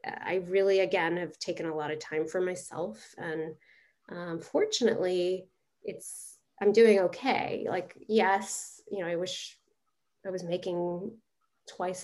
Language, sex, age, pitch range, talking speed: English, female, 30-49, 175-225 Hz, 140 wpm